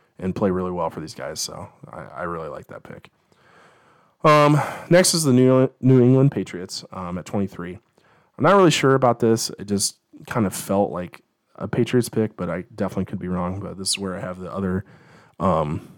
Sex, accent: male, American